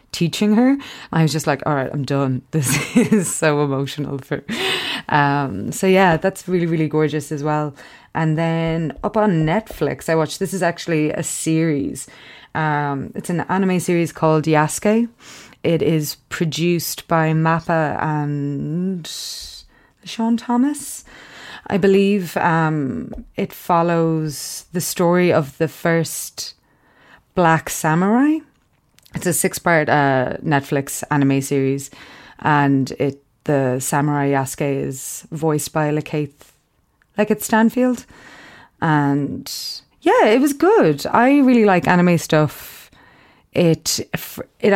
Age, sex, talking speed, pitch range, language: 30-49, female, 125 wpm, 145-180 Hz, English